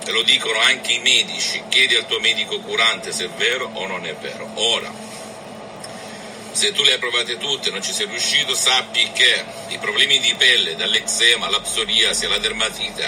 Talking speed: 190 wpm